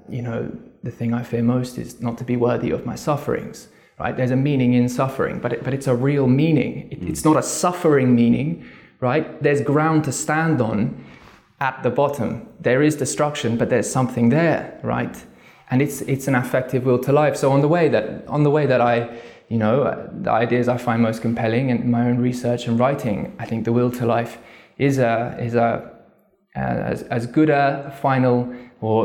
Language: English